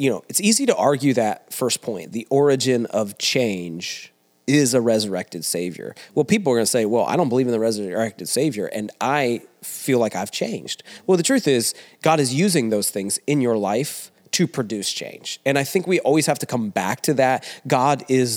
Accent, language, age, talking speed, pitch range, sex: American, English, 30-49, 210 wpm, 115-150 Hz, male